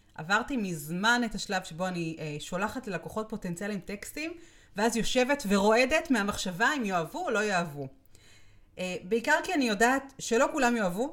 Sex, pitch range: female, 175-255 Hz